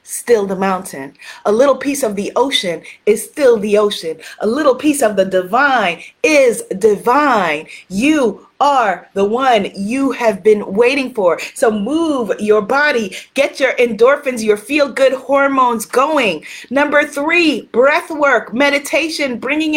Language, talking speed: English, 145 wpm